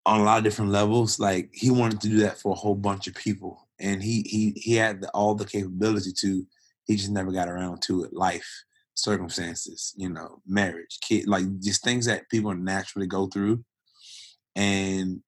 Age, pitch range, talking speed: 20-39, 95-105 Hz, 195 wpm